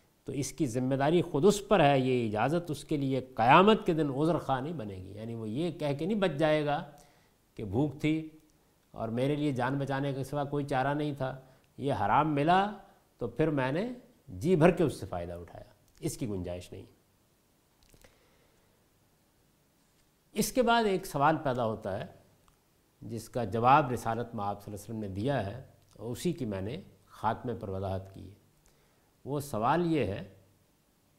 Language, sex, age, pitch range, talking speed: Urdu, male, 50-69, 110-175 Hz, 190 wpm